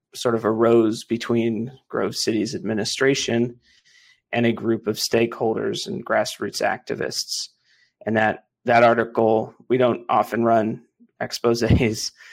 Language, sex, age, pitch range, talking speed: English, male, 30-49, 115-130 Hz, 115 wpm